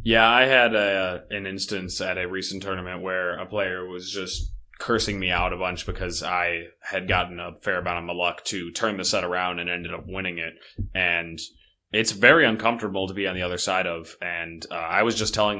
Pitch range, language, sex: 90-100 Hz, English, male